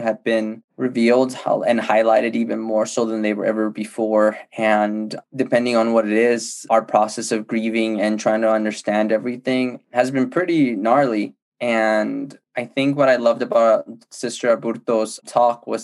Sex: male